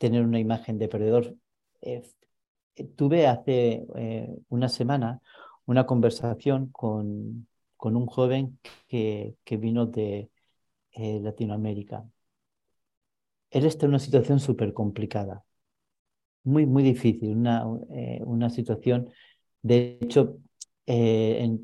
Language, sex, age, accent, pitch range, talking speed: Spanish, male, 40-59, Spanish, 110-125 Hz, 115 wpm